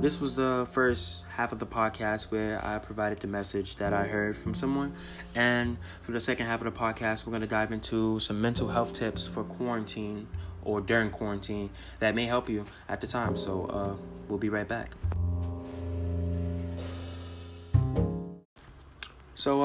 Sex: male